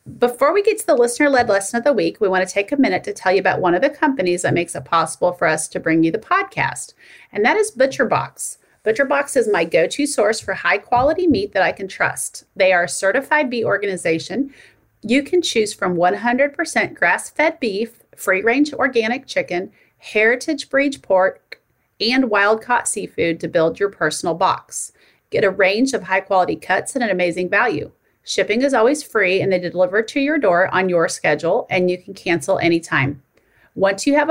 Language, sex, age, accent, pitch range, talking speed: English, female, 30-49, American, 175-255 Hz, 190 wpm